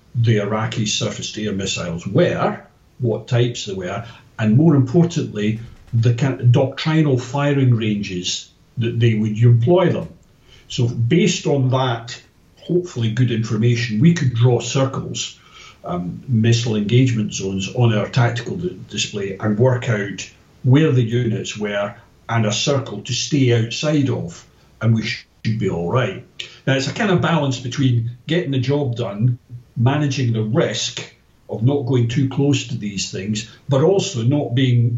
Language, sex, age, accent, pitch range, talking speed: English, male, 60-79, British, 115-135 Hz, 150 wpm